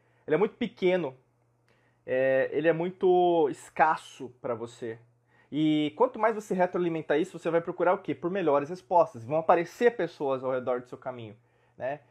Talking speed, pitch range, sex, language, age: 170 wpm, 140-195 Hz, male, Portuguese, 20-39